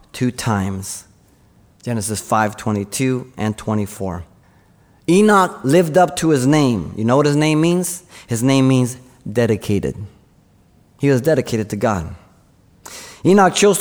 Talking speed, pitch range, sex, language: 130 wpm, 110-165 Hz, male, English